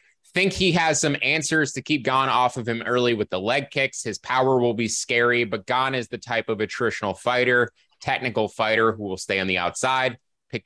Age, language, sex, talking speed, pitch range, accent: 20-39, English, male, 215 wpm, 100-125 Hz, American